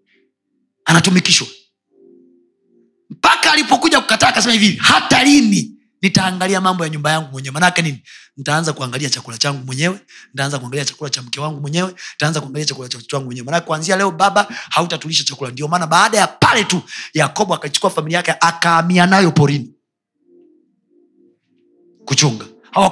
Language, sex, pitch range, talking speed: Swahili, male, 155-260 Hz, 130 wpm